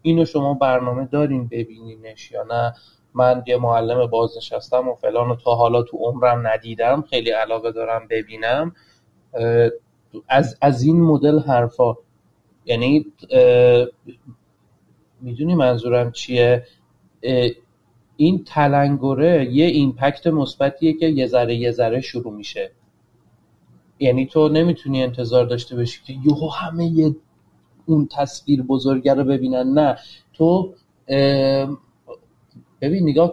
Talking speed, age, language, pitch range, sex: 110 wpm, 30-49, Persian, 120-150 Hz, male